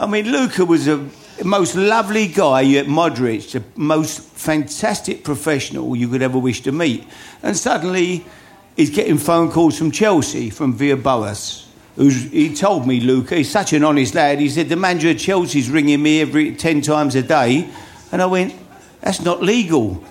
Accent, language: British, English